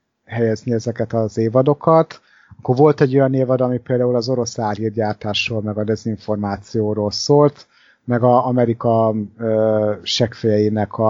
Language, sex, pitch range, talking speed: Hungarian, male, 105-125 Hz, 115 wpm